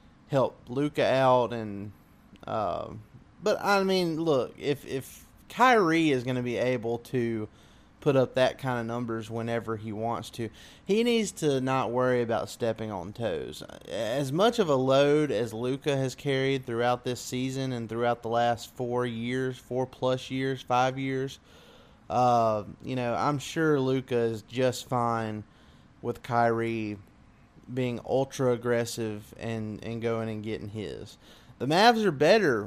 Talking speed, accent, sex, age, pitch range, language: 150 wpm, American, male, 20-39, 115-140 Hz, English